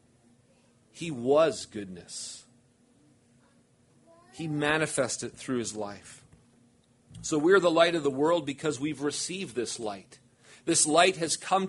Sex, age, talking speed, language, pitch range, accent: male, 40-59, 125 wpm, English, 120-175 Hz, American